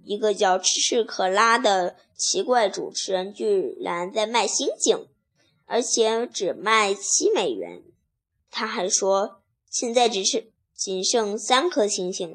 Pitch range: 185-245 Hz